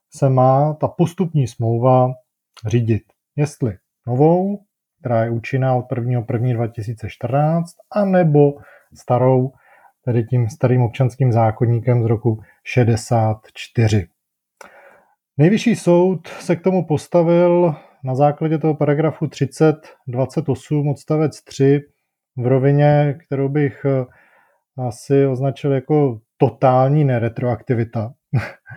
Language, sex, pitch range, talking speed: Czech, male, 125-150 Hz, 100 wpm